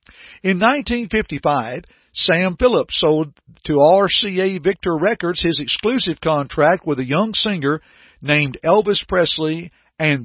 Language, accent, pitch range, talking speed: English, American, 145-195 Hz, 115 wpm